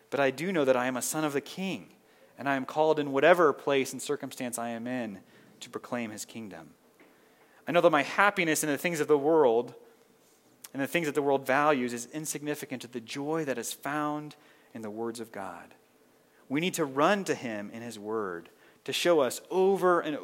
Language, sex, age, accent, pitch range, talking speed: English, male, 30-49, American, 120-160 Hz, 215 wpm